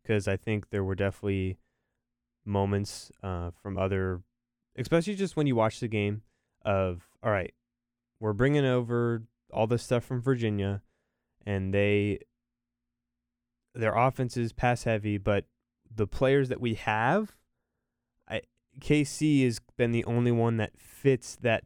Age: 10-29